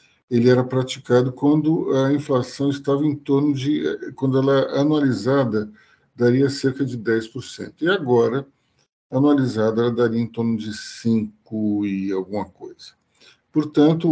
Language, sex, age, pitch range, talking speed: Portuguese, male, 50-69, 115-150 Hz, 130 wpm